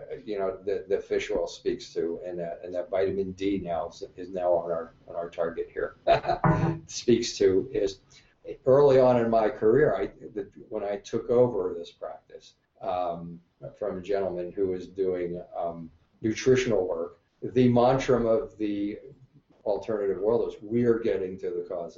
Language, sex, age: English, male, 50-69